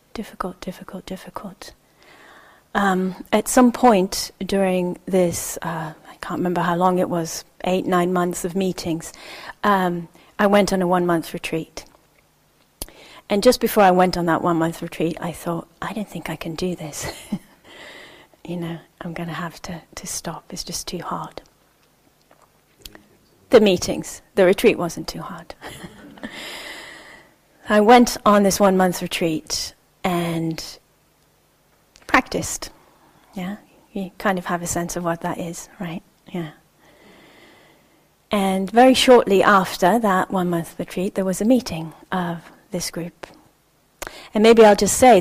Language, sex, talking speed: English, female, 140 wpm